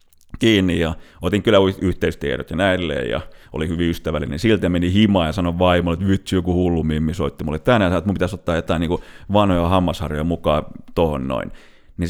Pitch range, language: 85-125 Hz, Finnish